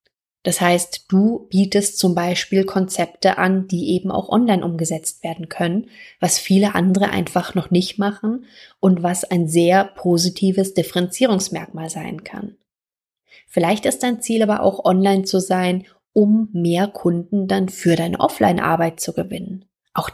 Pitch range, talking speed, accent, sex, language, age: 180-205 Hz, 145 wpm, German, female, German, 20-39